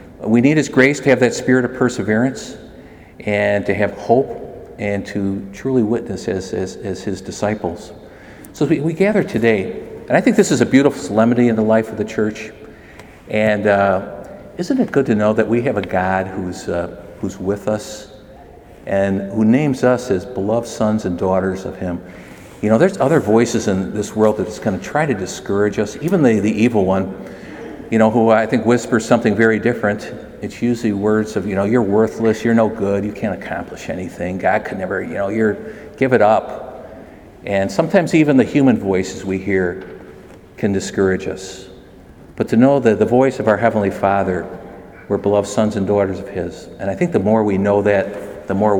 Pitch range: 95-120 Hz